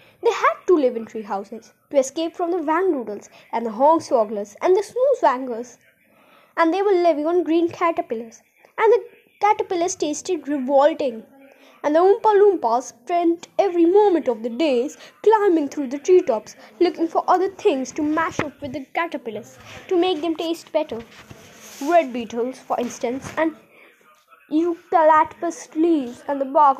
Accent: native